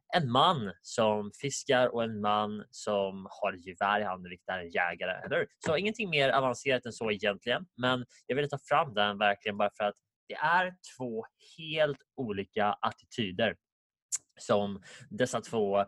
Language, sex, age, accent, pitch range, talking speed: Swedish, male, 20-39, Norwegian, 100-130 Hz, 160 wpm